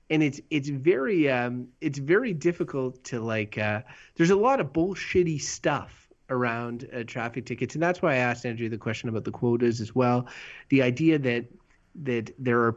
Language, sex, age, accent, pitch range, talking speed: English, male, 30-49, American, 120-140 Hz, 190 wpm